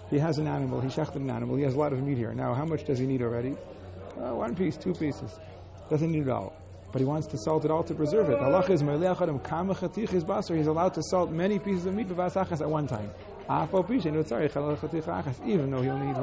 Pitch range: 130-160 Hz